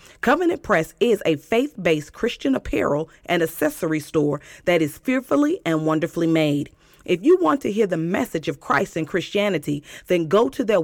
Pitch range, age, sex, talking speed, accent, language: 160-235 Hz, 40-59, female, 170 wpm, American, English